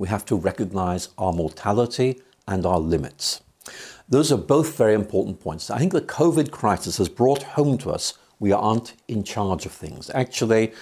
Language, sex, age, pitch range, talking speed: English, male, 60-79, 100-130 Hz, 175 wpm